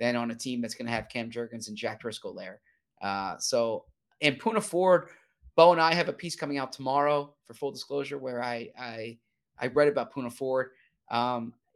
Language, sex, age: English, male, 20-39